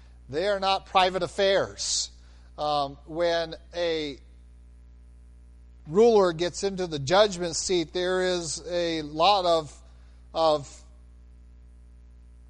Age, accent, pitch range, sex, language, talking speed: 40-59, American, 140-190 Hz, male, English, 95 wpm